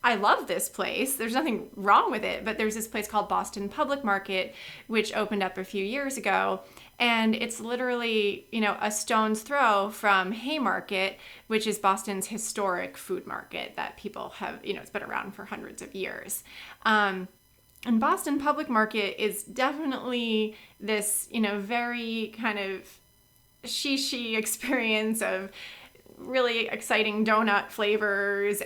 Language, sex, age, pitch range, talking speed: English, female, 30-49, 195-240 Hz, 150 wpm